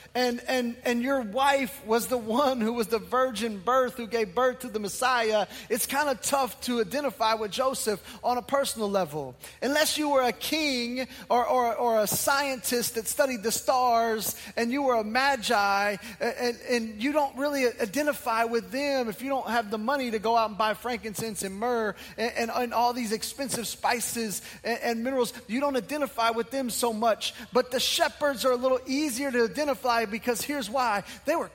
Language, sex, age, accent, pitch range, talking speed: English, male, 20-39, American, 215-260 Hz, 200 wpm